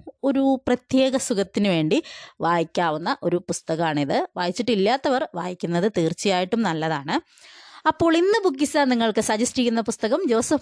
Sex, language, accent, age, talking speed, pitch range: female, Malayalam, native, 20-39, 105 wpm, 175-245 Hz